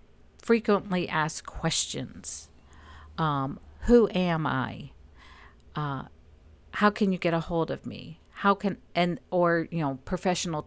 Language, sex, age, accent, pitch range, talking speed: English, female, 50-69, American, 145-180 Hz, 130 wpm